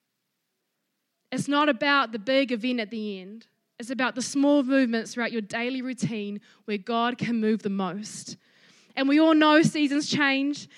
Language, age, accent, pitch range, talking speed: English, 20-39, Australian, 225-280 Hz, 165 wpm